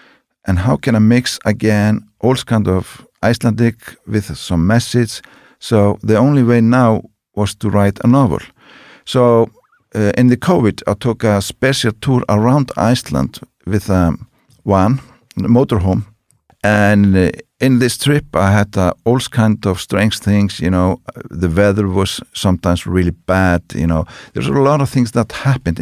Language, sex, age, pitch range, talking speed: English, male, 50-69, 95-120 Hz, 160 wpm